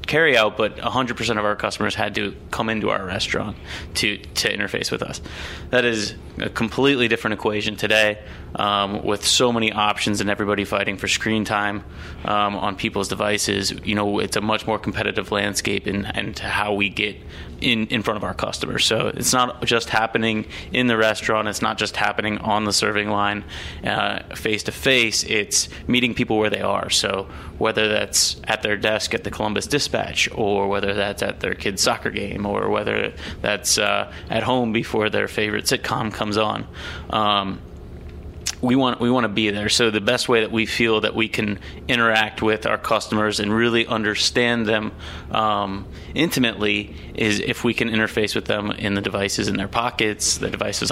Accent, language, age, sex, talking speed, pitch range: American, English, 20-39, male, 185 wpm, 100-115 Hz